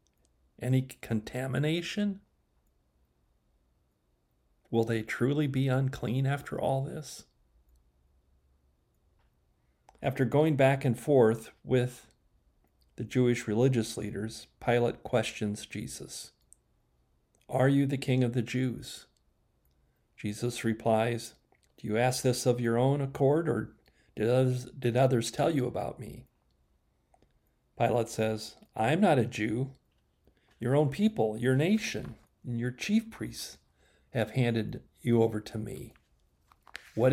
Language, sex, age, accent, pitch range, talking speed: English, male, 40-59, American, 90-130 Hz, 115 wpm